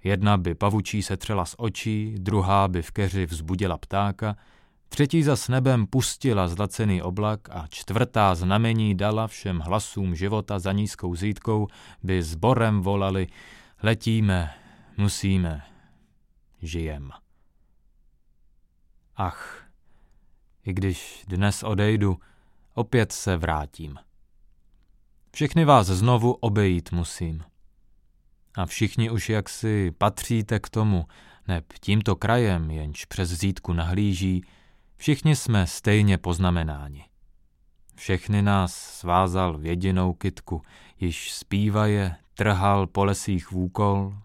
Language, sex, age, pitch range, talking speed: Czech, male, 30-49, 85-105 Hz, 105 wpm